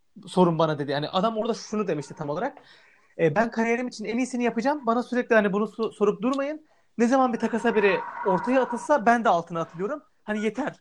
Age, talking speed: 30-49, 195 wpm